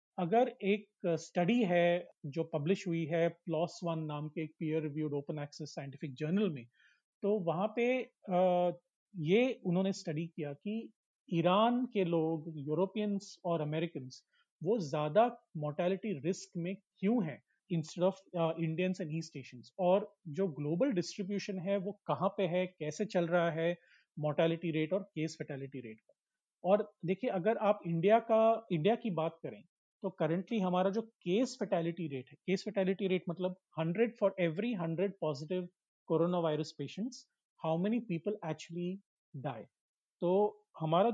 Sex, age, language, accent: male, 30-49, Hindi, native